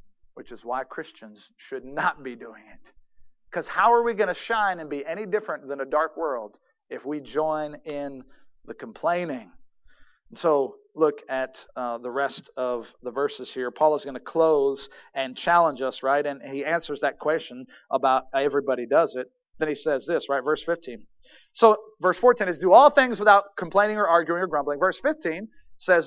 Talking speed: 185 wpm